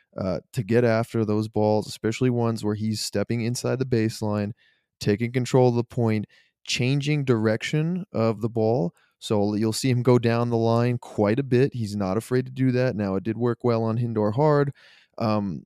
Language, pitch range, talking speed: English, 105-125 Hz, 190 wpm